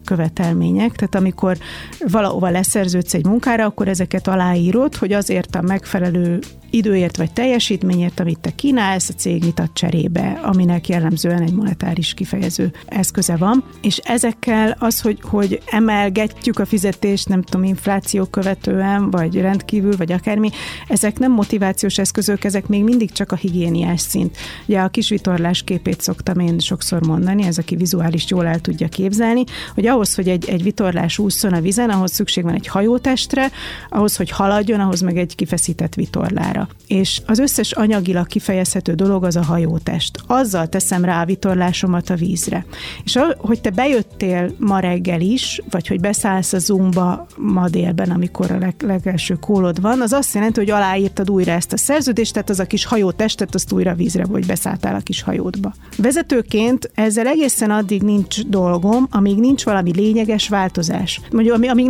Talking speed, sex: 160 wpm, female